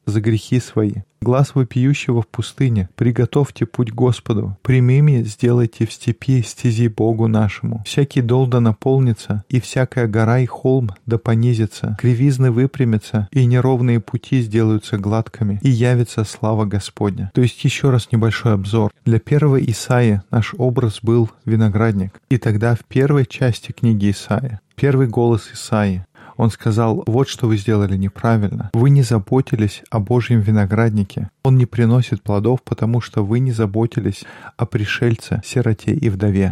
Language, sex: Russian, male